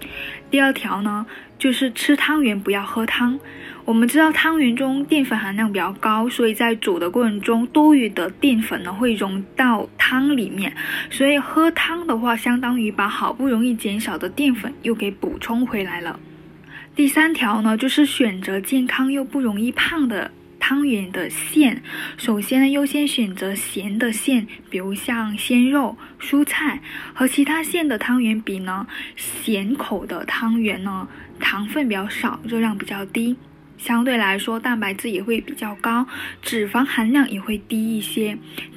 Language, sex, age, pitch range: Chinese, female, 10-29, 215-275 Hz